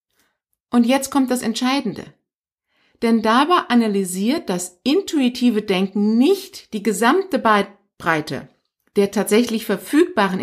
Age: 50-69